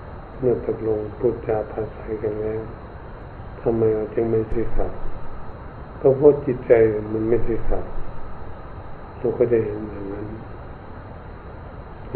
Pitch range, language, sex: 105-120 Hz, Thai, male